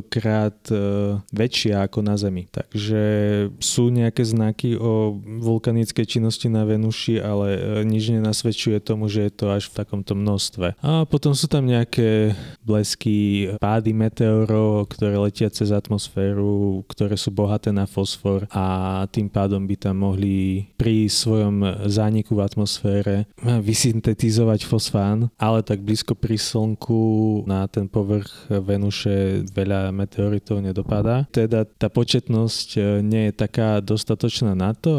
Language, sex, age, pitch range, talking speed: Slovak, male, 20-39, 100-115 Hz, 130 wpm